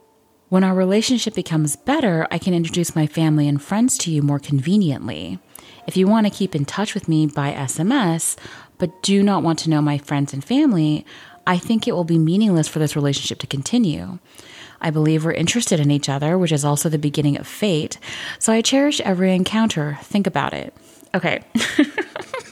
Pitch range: 150-220 Hz